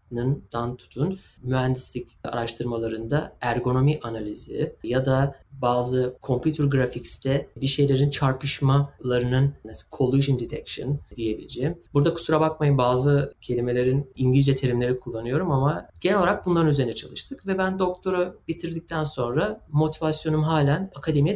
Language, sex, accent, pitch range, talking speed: Turkish, male, native, 130-160 Hz, 105 wpm